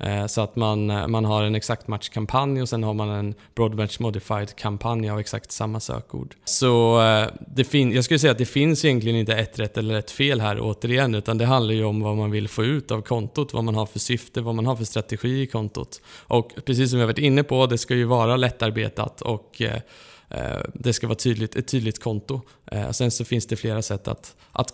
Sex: male